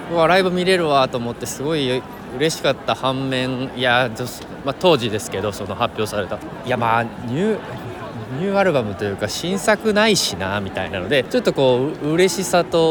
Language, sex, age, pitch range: Japanese, male, 20-39, 125-170 Hz